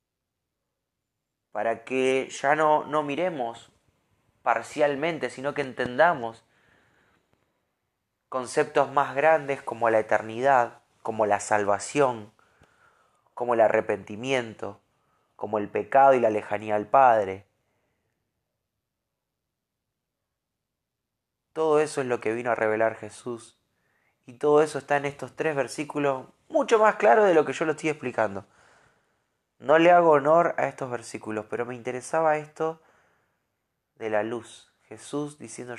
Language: Spanish